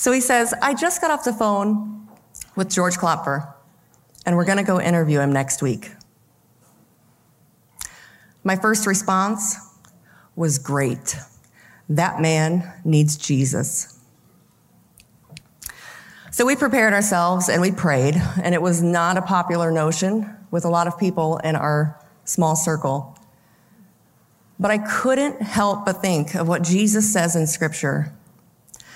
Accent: American